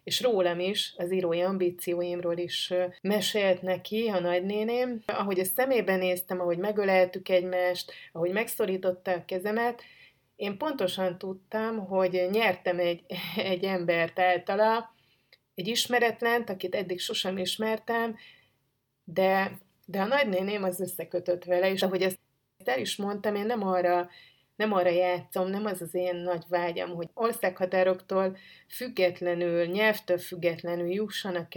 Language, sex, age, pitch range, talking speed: Hungarian, female, 30-49, 175-195 Hz, 130 wpm